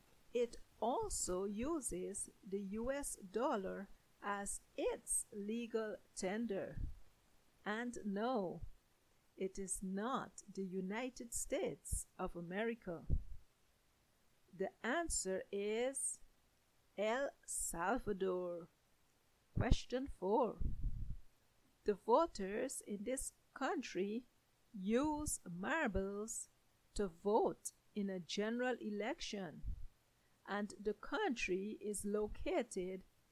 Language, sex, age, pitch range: English, female, 50-69, 195-245 Hz